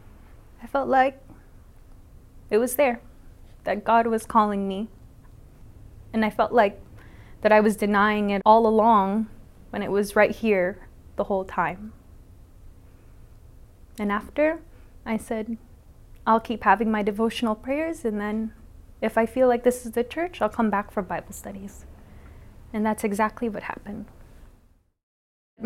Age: 20-39